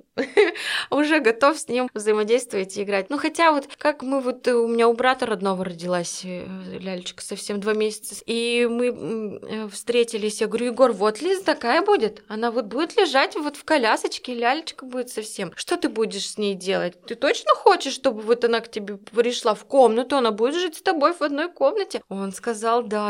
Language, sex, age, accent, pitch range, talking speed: Russian, female, 20-39, native, 210-260 Hz, 185 wpm